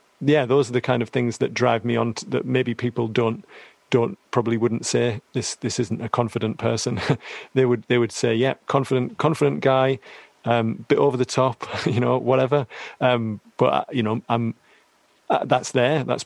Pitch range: 115-125 Hz